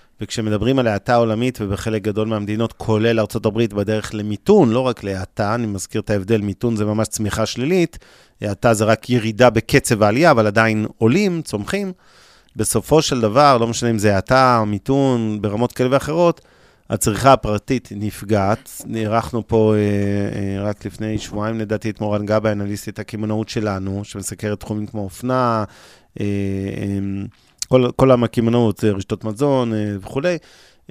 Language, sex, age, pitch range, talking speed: Hebrew, male, 30-49, 105-125 Hz, 145 wpm